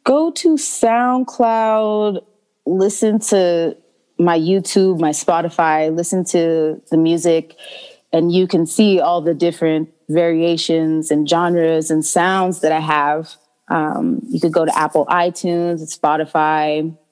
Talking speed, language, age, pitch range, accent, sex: 125 wpm, English, 20-39, 155-190 Hz, American, female